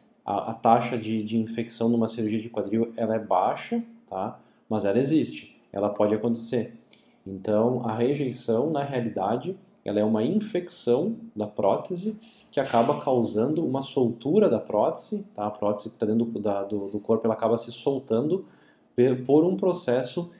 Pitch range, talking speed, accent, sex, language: 110-130 Hz, 170 wpm, Brazilian, male, Portuguese